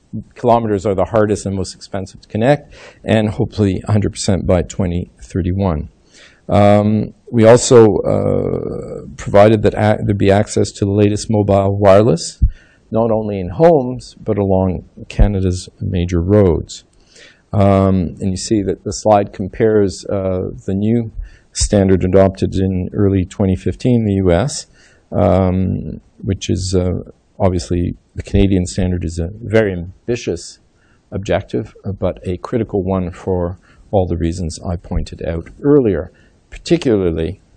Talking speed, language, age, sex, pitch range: 130 wpm, English, 50-69, male, 90-105 Hz